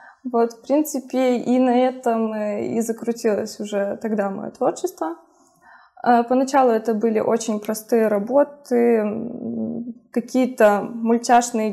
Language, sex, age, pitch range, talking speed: Russian, female, 20-39, 215-255 Hz, 100 wpm